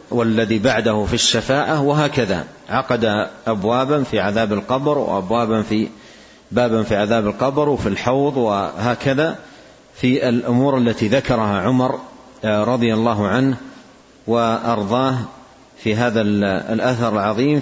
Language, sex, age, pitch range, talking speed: Arabic, male, 50-69, 110-130 Hz, 110 wpm